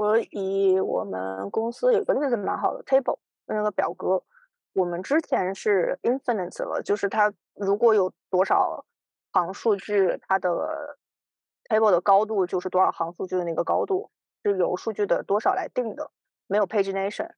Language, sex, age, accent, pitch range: Chinese, female, 20-39, native, 185-240 Hz